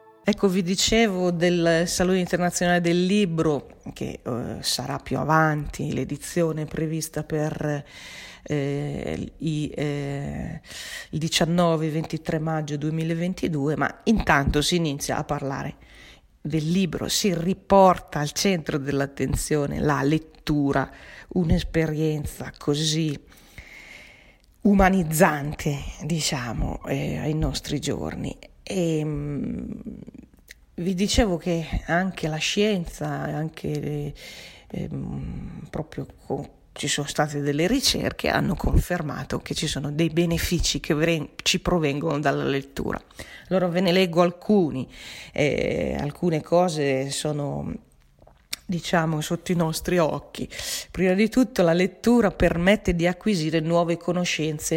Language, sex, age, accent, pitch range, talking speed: Italian, female, 40-59, native, 145-180 Hz, 110 wpm